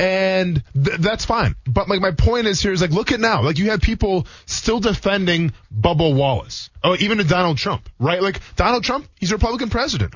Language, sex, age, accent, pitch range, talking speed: English, male, 20-39, American, 130-190 Hz, 220 wpm